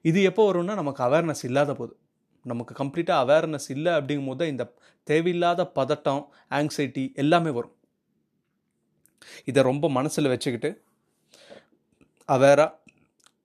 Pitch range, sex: 135-175 Hz, male